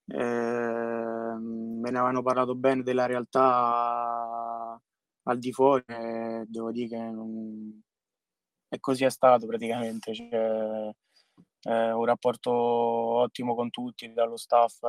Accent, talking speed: native, 125 wpm